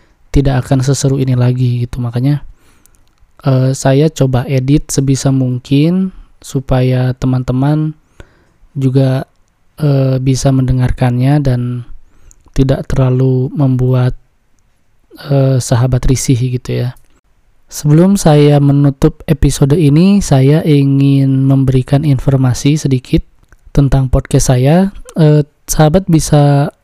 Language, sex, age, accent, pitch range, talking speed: Indonesian, male, 20-39, native, 130-150 Hz, 100 wpm